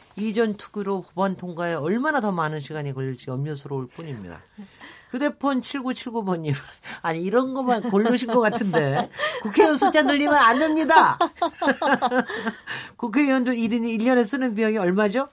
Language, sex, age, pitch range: Korean, male, 50-69, 165-245 Hz